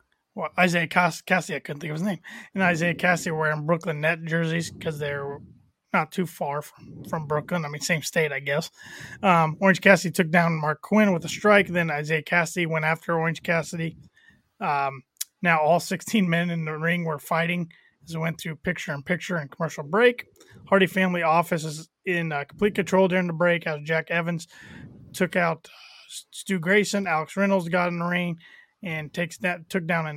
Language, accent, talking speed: English, American, 200 wpm